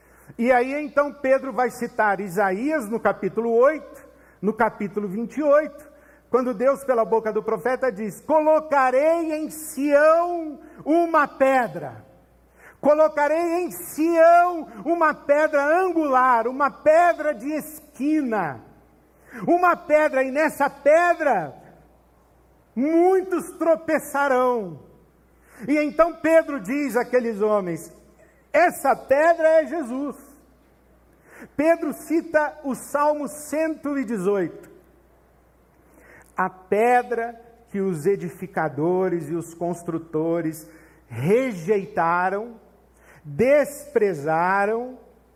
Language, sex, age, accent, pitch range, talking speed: Portuguese, male, 60-79, Brazilian, 205-295 Hz, 90 wpm